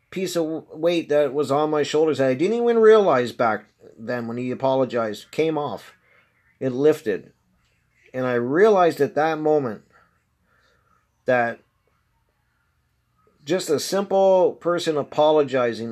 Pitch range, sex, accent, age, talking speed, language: 125-160 Hz, male, American, 40-59, 130 wpm, English